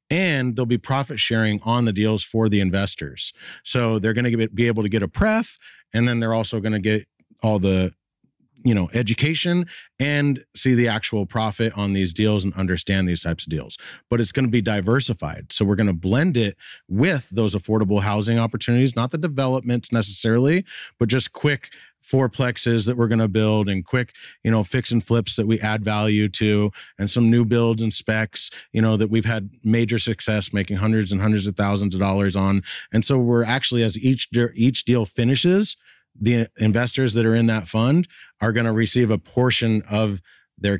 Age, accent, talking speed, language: 40-59, American, 205 wpm, English